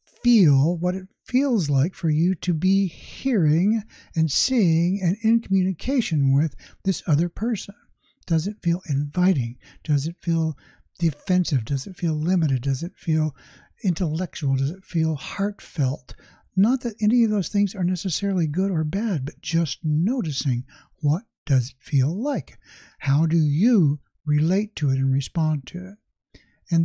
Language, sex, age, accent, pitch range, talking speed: English, male, 60-79, American, 150-195 Hz, 155 wpm